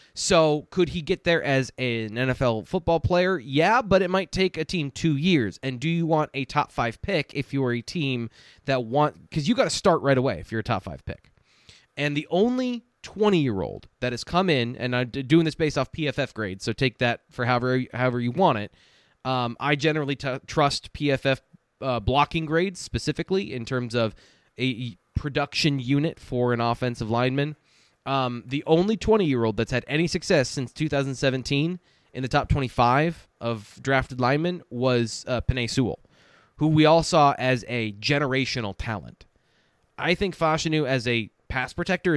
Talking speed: 180 wpm